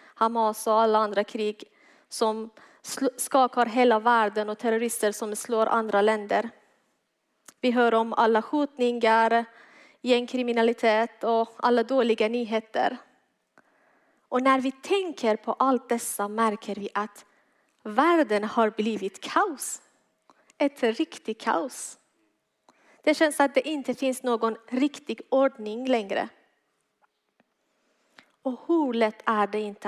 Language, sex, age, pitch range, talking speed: Swedish, female, 30-49, 215-255 Hz, 115 wpm